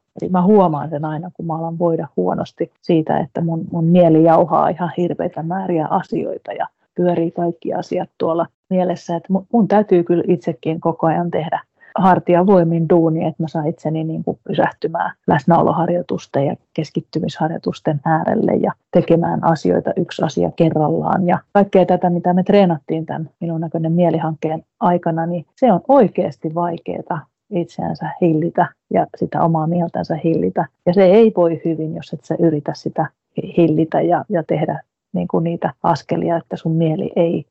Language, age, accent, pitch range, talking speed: Finnish, 30-49, native, 160-180 Hz, 155 wpm